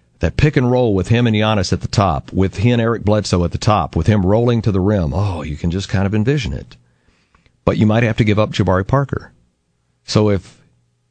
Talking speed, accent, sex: 240 wpm, American, male